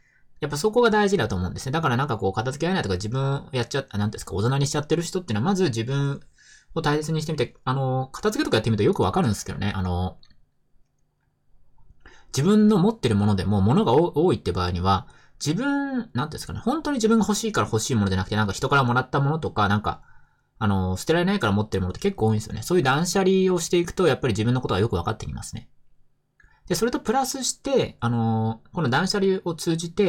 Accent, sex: native, male